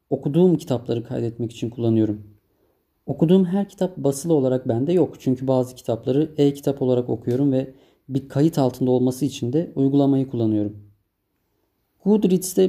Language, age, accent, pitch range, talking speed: Turkish, 30-49, native, 120-155 Hz, 130 wpm